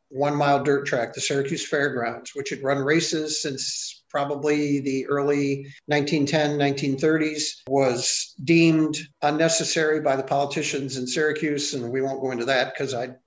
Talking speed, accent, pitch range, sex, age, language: 145 wpm, American, 140-160 Hz, male, 50-69, English